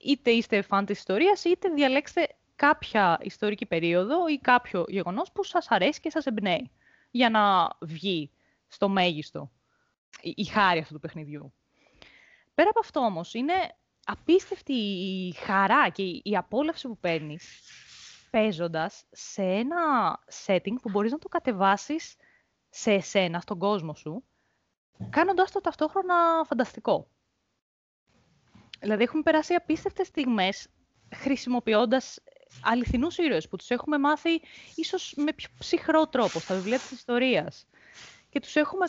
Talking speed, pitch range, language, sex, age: 130 wpm, 195-310 Hz, Greek, female, 20-39